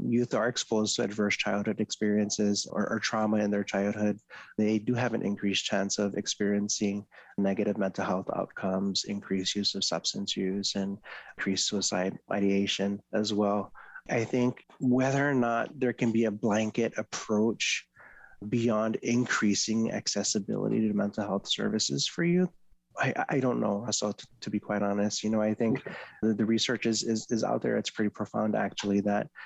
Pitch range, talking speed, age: 100-115 Hz, 170 wpm, 20-39